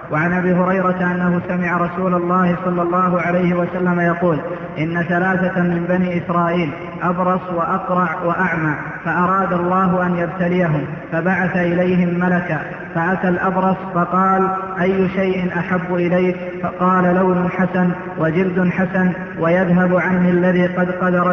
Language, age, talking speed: Arabic, 20-39, 125 wpm